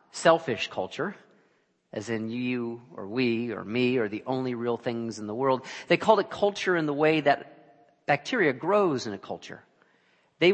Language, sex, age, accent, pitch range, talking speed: English, male, 40-59, American, 115-145 Hz, 175 wpm